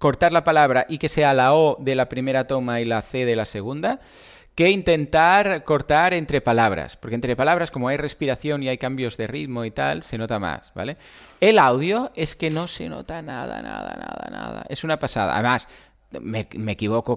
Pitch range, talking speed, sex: 115-160 Hz, 205 wpm, male